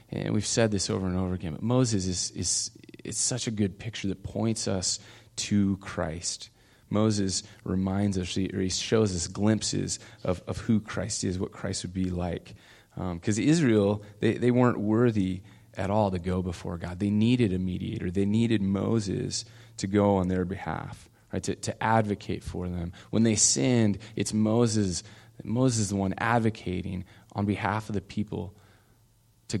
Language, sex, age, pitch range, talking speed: English, male, 20-39, 95-115 Hz, 175 wpm